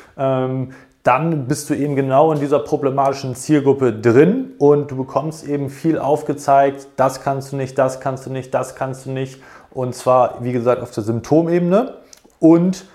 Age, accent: 30-49, German